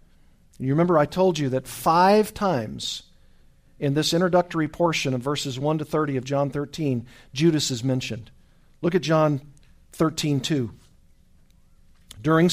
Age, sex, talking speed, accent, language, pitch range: 50-69, male, 140 wpm, American, English, 125-180 Hz